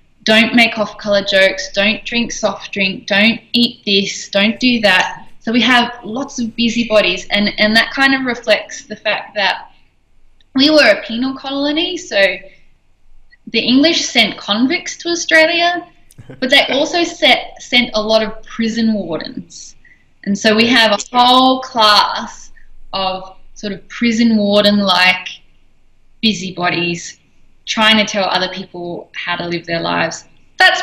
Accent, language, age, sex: Australian, English, 10-29, female